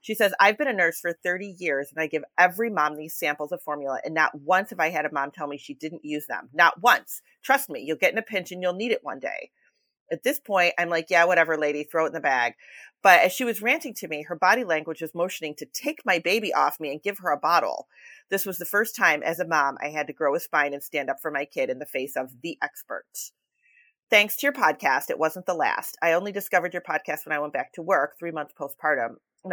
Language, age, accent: English, 30-49, American